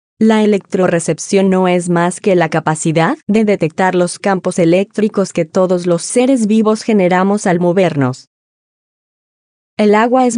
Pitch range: 175-210 Hz